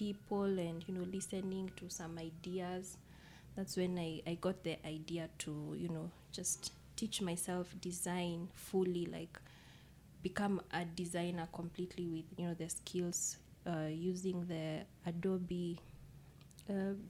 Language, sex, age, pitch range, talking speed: English, female, 20-39, 170-195 Hz, 135 wpm